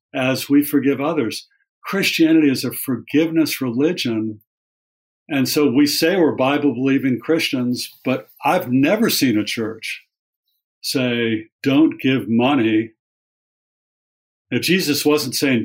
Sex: male